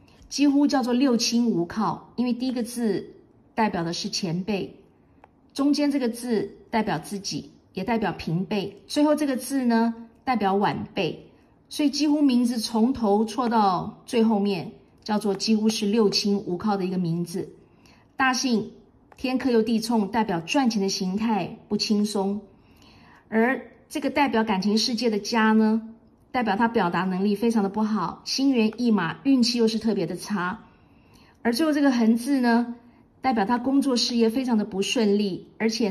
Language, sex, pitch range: Chinese, female, 200-245 Hz